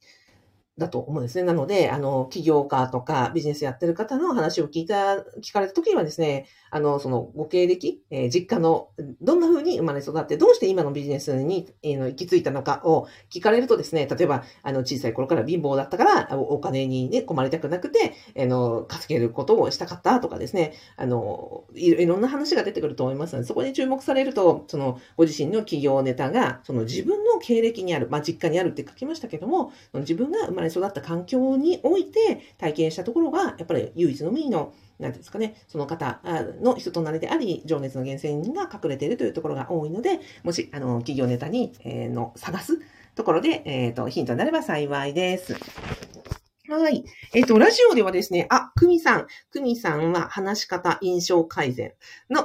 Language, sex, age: Japanese, female, 50-69